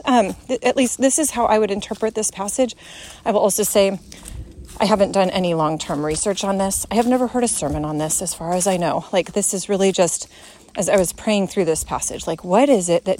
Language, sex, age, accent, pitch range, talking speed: English, female, 30-49, American, 180-220 Hz, 245 wpm